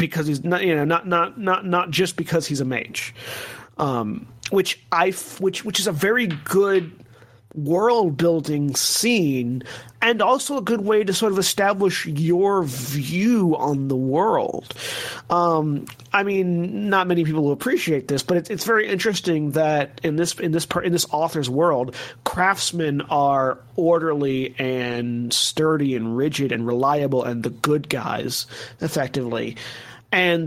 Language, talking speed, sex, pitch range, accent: English, 160 wpm, male, 130-170 Hz, American